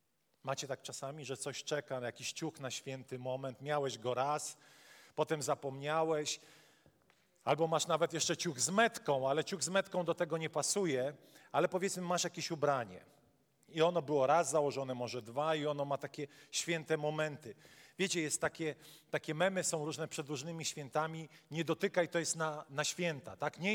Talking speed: 170 wpm